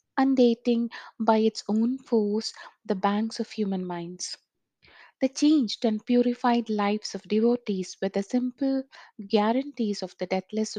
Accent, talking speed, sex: Indian, 135 wpm, female